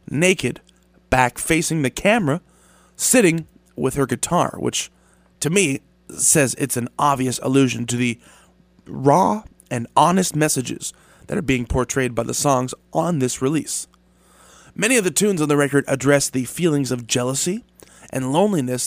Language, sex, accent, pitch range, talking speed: English, male, American, 115-135 Hz, 150 wpm